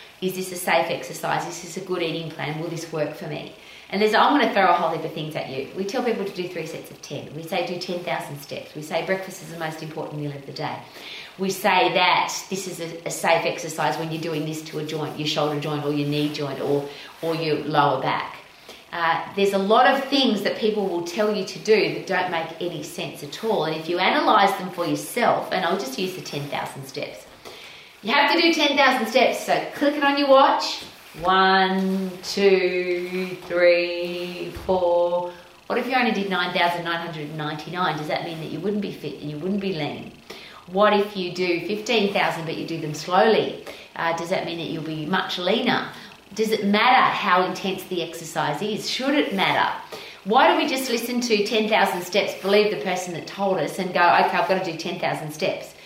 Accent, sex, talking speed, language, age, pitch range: Australian, female, 220 wpm, English, 30-49, 160-200 Hz